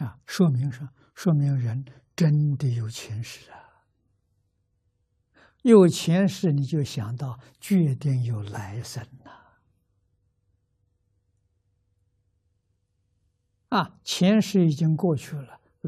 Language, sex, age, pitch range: Chinese, male, 60-79, 100-140 Hz